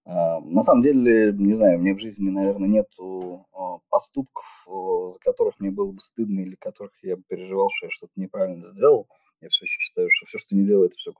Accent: native